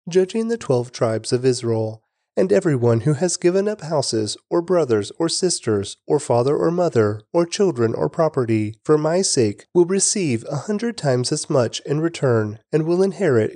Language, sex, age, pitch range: English, male, 30-49, 115-185 Hz